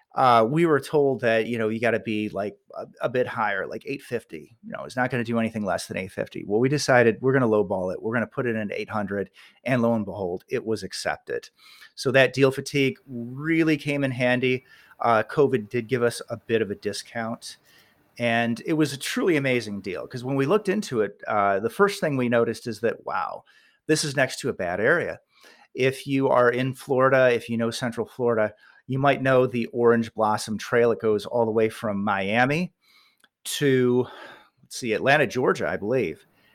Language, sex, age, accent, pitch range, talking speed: English, male, 40-59, American, 115-135 Hz, 210 wpm